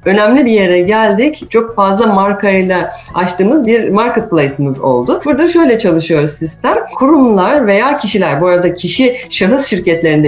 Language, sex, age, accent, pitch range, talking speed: Turkish, female, 40-59, native, 185-265 Hz, 135 wpm